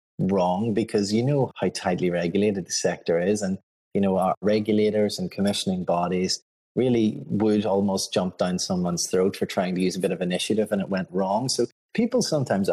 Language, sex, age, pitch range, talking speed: English, male, 30-49, 100-140 Hz, 190 wpm